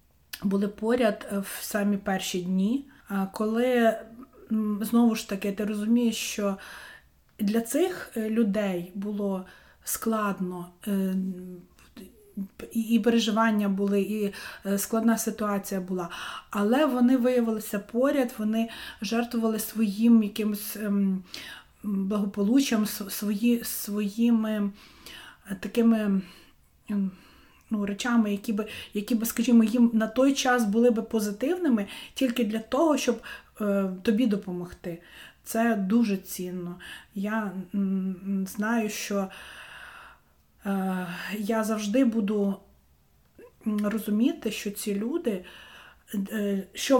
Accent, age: native, 30-49